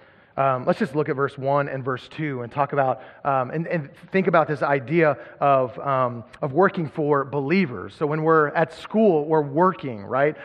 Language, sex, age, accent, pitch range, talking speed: English, male, 30-49, American, 120-155 Hz, 195 wpm